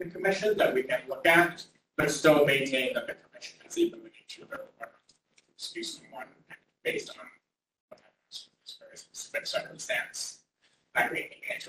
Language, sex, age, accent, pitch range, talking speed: English, male, 30-49, American, 130-170 Hz, 150 wpm